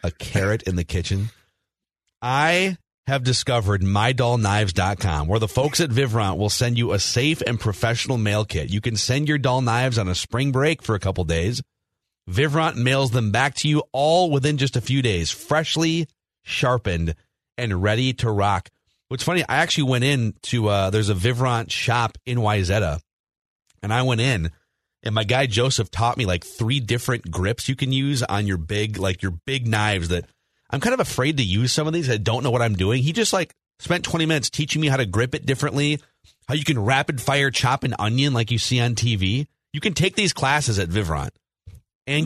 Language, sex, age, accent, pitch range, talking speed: English, male, 30-49, American, 100-135 Hz, 205 wpm